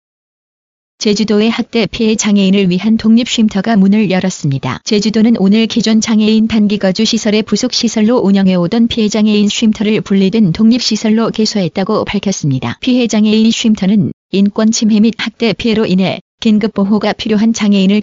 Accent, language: native, Korean